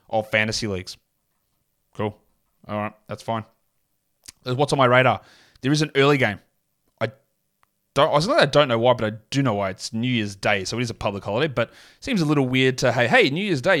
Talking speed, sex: 230 wpm, male